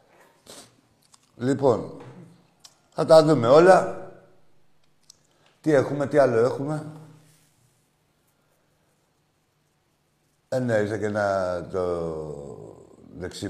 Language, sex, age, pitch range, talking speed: Greek, male, 60-79, 135-205 Hz, 75 wpm